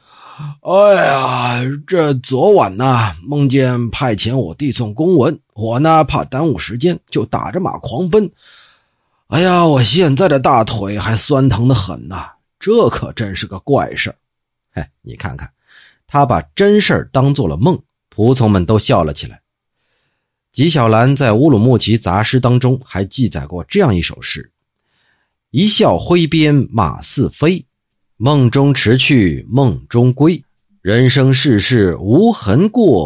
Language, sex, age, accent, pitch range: Chinese, male, 30-49, native, 110-145 Hz